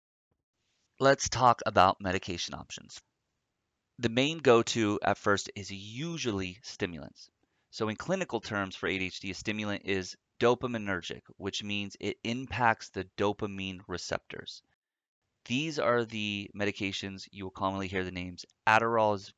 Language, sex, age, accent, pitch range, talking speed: English, male, 30-49, American, 95-120 Hz, 130 wpm